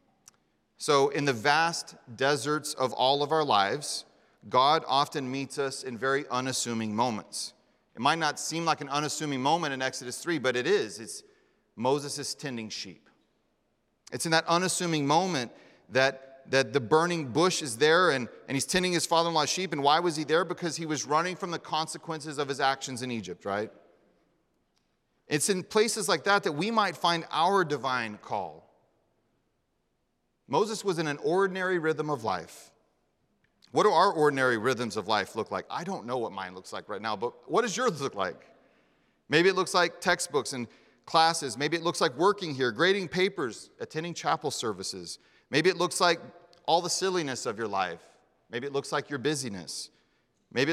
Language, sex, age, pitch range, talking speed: English, male, 30-49, 135-170 Hz, 180 wpm